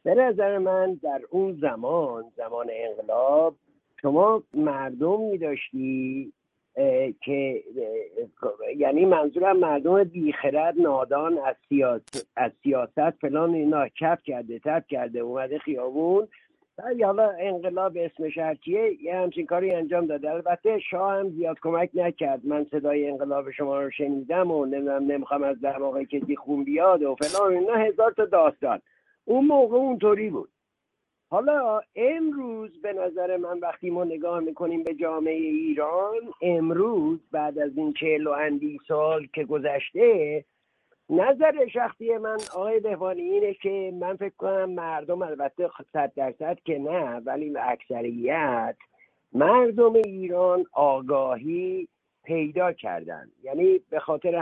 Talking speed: 130 wpm